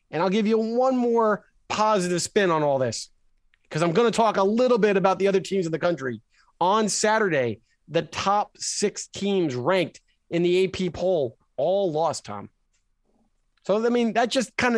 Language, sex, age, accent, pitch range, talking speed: English, male, 30-49, American, 170-205 Hz, 185 wpm